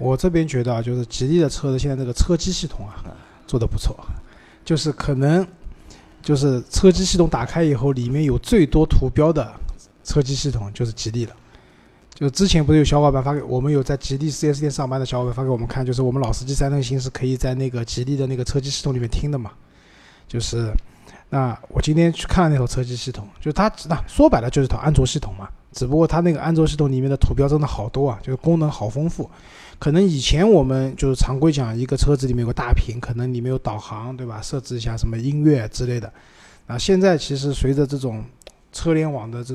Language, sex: Chinese, male